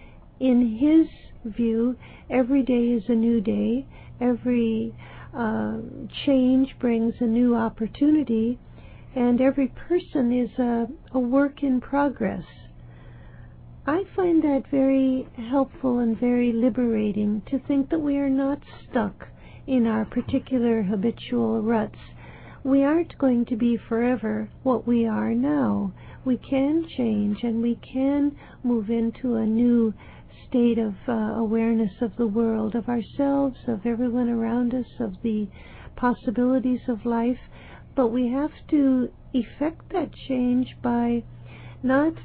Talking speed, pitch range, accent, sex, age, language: 130 wpm, 230-265 Hz, American, female, 60-79, English